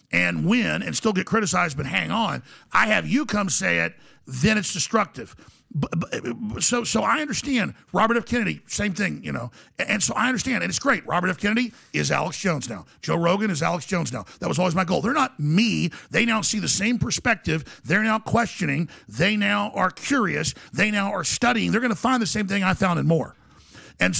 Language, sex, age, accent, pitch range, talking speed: English, male, 50-69, American, 175-225 Hz, 215 wpm